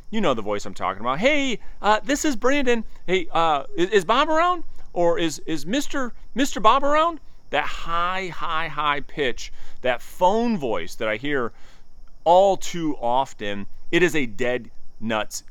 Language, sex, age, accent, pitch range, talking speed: English, male, 30-49, American, 105-165 Hz, 165 wpm